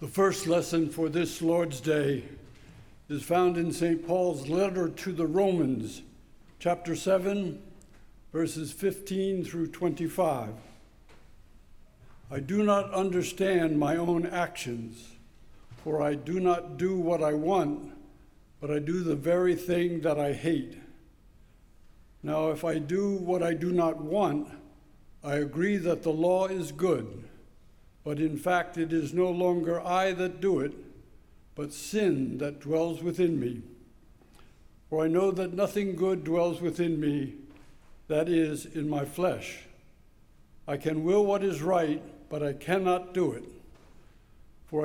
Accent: American